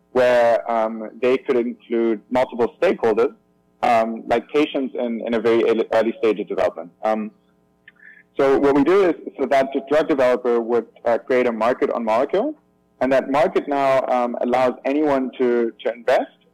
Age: 20-39